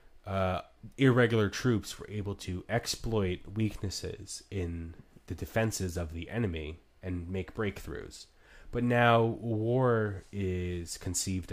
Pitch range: 85-105 Hz